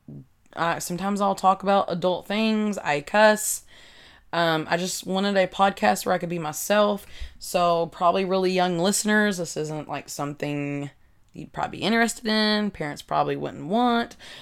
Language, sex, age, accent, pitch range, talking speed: English, female, 20-39, American, 170-205 Hz, 160 wpm